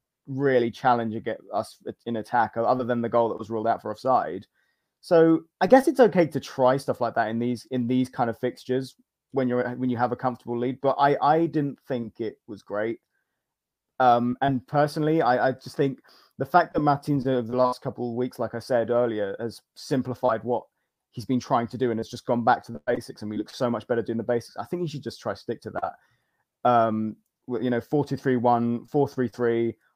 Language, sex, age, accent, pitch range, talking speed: English, male, 20-39, British, 120-145 Hz, 220 wpm